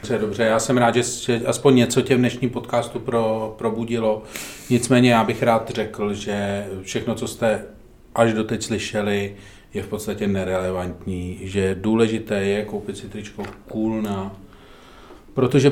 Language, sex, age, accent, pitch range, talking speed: Czech, male, 40-59, native, 105-135 Hz, 140 wpm